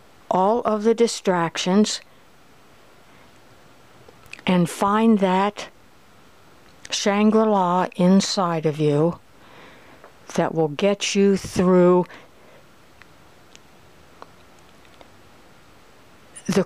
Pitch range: 165-200 Hz